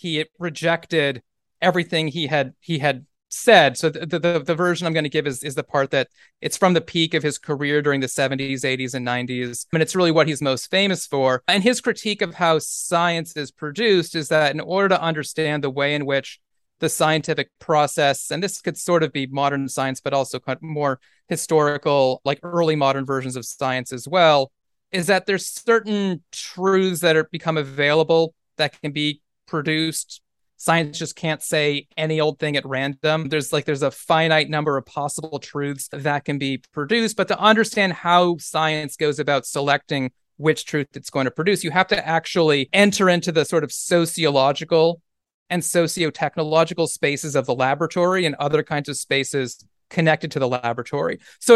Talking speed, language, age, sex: 185 wpm, English, 30-49, male